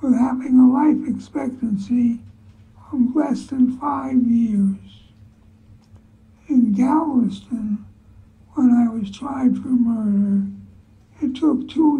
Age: 60-79